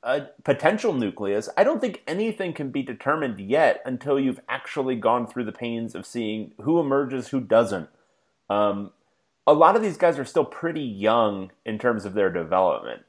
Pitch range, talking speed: 105-140 Hz, 180 wpm